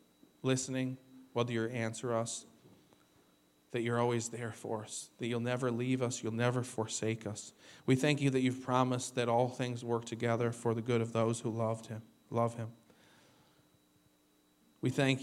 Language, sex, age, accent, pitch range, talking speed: English, male, 40-59, American, 105-130 Hz, 170 wpm